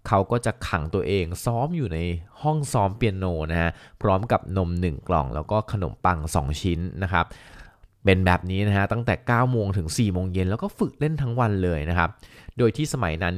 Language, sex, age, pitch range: Thai, male, 20-39, 90-120 Hz